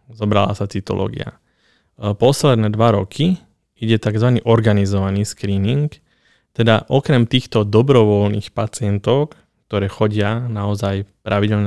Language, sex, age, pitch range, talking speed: Slovak, male, 20-39, 100-115 Hz, 100 wpm